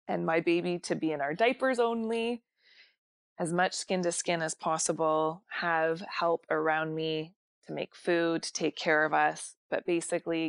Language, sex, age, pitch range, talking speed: English, female, 20-39, 155-190 Hz, 170 wpm